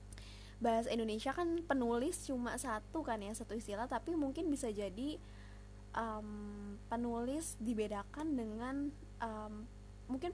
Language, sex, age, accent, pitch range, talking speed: Indonesian, female, 20-39, native, 190-260 Hz, 115 wpm